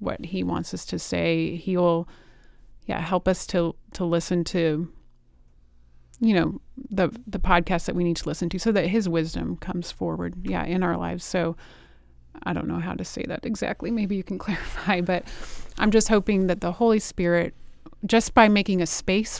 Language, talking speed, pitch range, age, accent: English, 190 wpm, 170-195 Hz, 30-49, American